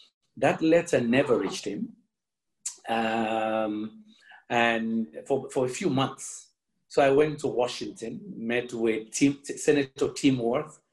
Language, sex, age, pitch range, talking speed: English, male, 50-69, 115-145 Hz, 120 wpm